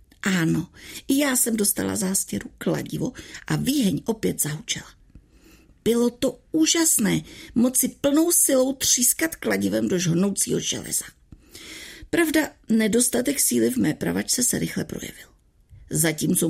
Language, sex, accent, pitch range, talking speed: Czech, female, native, 175-275 Hz, 115 wpm